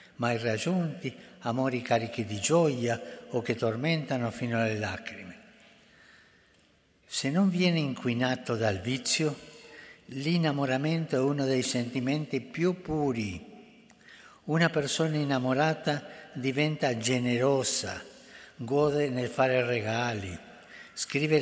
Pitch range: 120-150 Hz